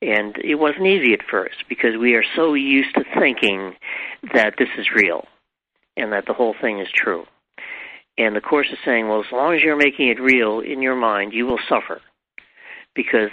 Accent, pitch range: American, 105-125 Hz